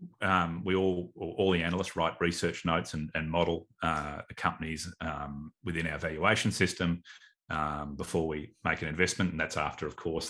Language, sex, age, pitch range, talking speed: English, male, 30-49, 80-100 Hz, 175 wpm